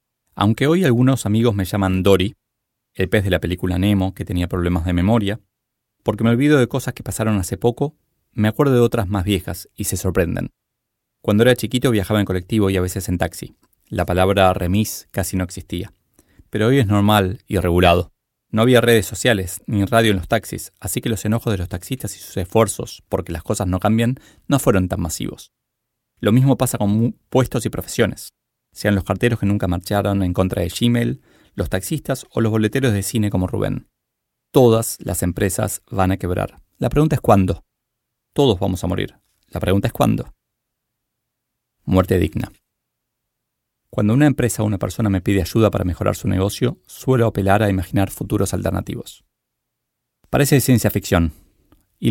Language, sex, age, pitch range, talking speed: Spanish, male, 20-39, 95-120 Hz, 180 wpm